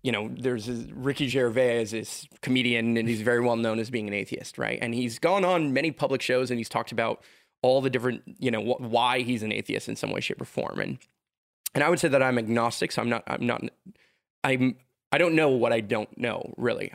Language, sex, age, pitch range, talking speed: English, male, 20-39, 120-145 Hz, 230 wpm